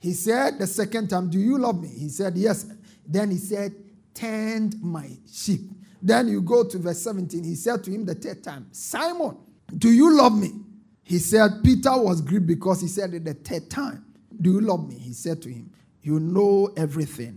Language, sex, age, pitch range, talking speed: English, male, 50-69, 160-230 Hz, 205 wpm